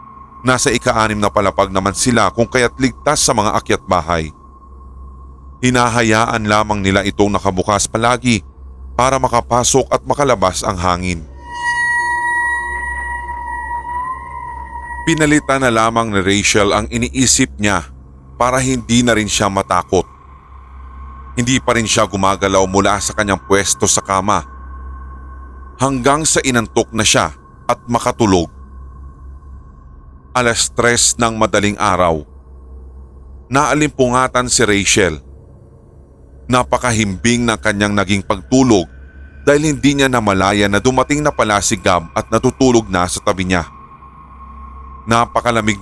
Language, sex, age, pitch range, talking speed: Filipino, male, 30-49, 85-125 Hz, 115 wpm